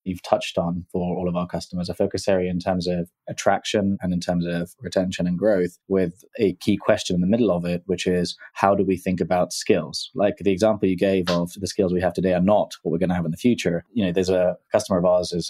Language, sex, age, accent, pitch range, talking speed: English, male, 20-39, British, 90-100 Hz, 265 wpm